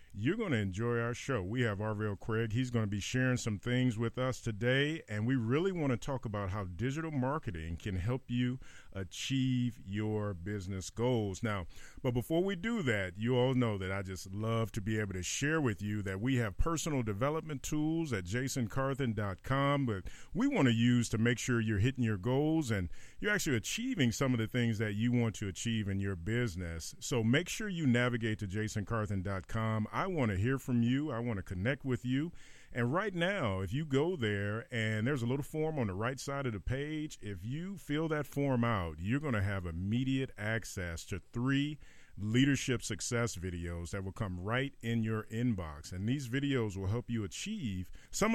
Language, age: English, 40-59